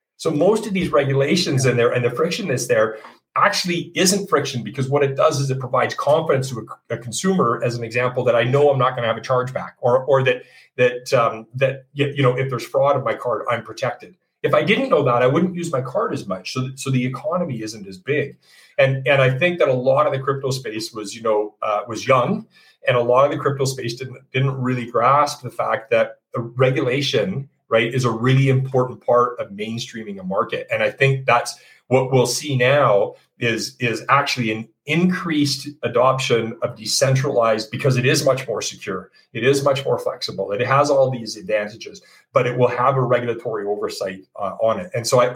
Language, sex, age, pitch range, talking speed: English, male, 40-59, 115-140 Hz, 215 wpm